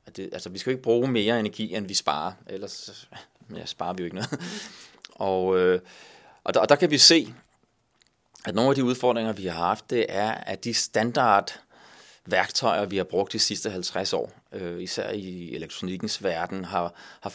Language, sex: Danish, male